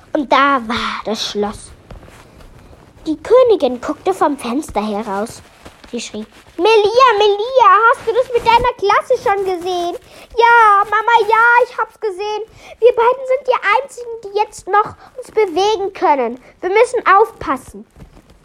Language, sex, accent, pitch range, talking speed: German, female, German, 270-420 Hz, 140 wpm